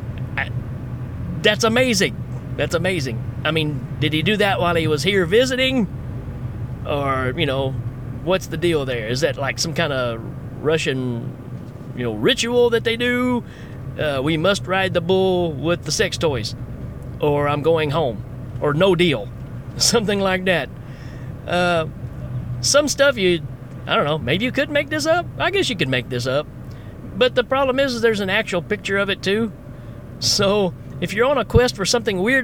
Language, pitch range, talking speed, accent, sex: English, 130-215 Hz, 180 wpm, American, male